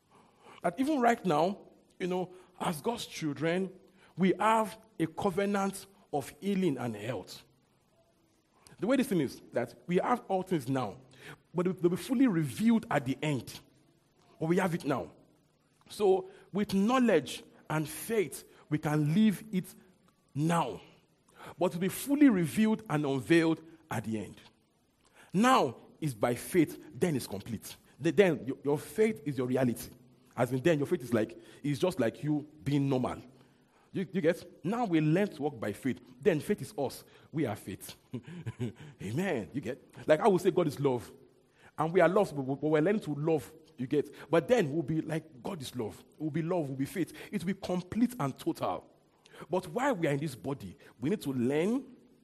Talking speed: 185 wpm